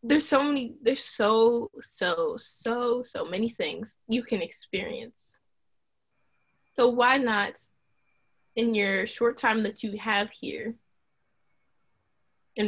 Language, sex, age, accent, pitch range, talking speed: English, female, 20-39, American, 210-250 Hz, 120 wpm